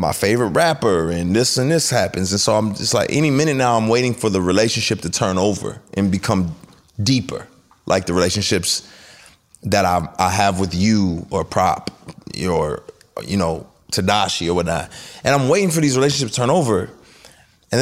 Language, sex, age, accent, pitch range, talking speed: English, male, 30-49, American, 95-115 Hz, 180 wpm